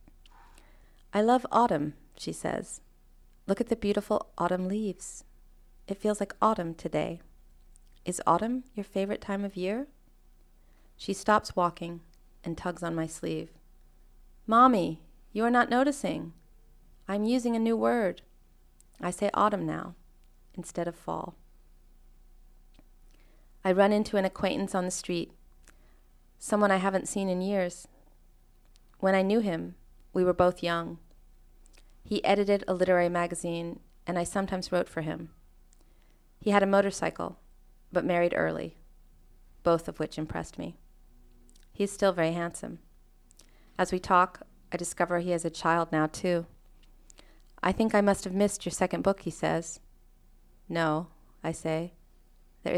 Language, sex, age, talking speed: English, female, 30-49, 140 wpm